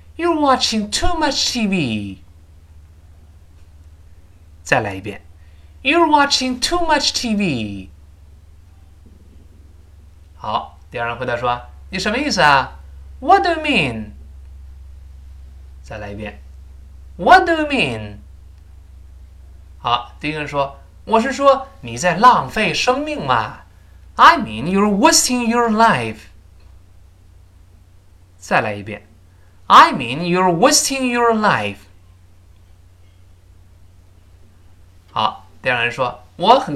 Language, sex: Chinese, male